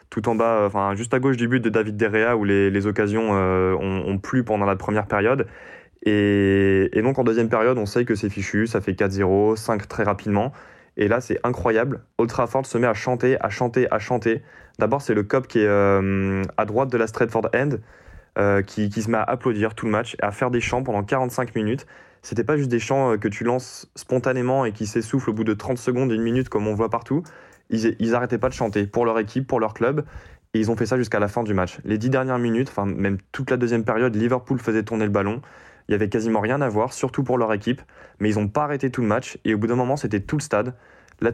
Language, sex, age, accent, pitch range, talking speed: French, male, 20-39, French, 105-125 Hz, 255 wpm